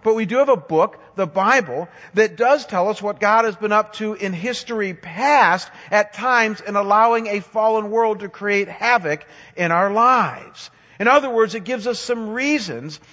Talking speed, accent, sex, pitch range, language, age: 190 wpm, American, male, 185-235 Hz, English, 50-69